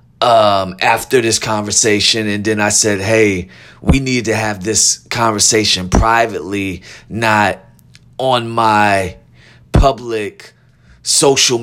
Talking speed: 110 wpm